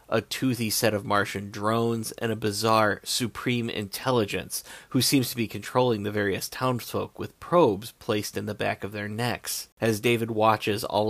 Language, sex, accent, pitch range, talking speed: English, male, American, 105-120 Hz, 175 wpm